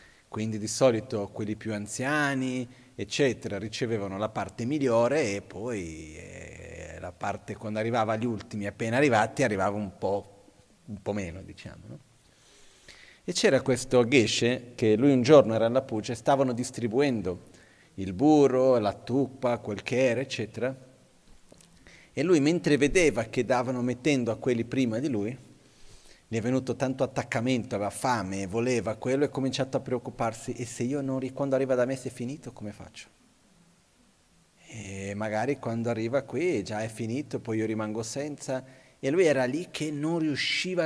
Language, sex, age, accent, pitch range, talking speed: Italian, male, 40-59, native, 110-140 Hz, 160 wpm